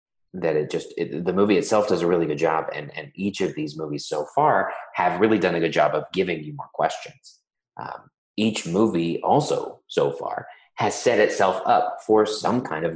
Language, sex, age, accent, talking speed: English, male, 30-49, American, 210 wpm